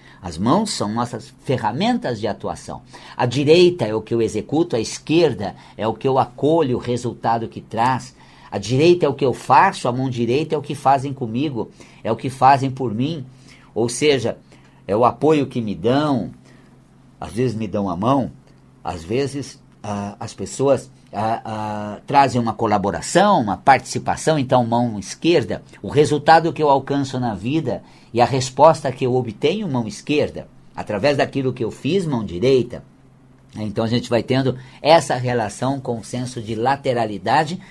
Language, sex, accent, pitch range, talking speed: Portuguese, male, Brazilian, 115-145 Hz, 170 wpm